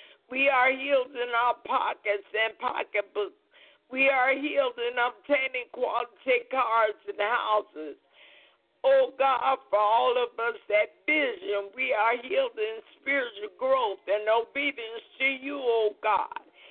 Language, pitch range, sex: English, 240-285 Hz, female